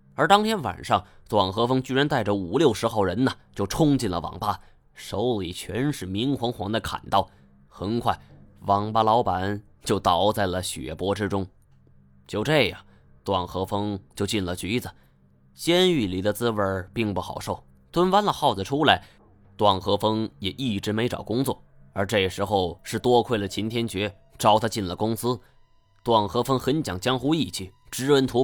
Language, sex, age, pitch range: Chinese, male, 20-39, 95-125 Hz